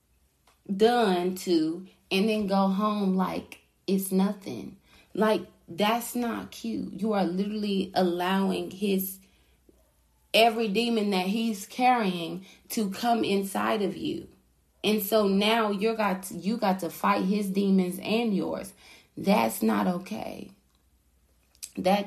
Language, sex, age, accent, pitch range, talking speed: English, female, 30-49, American, 175-205 Hz, 120 wpm